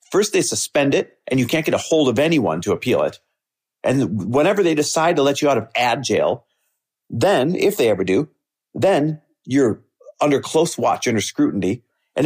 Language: English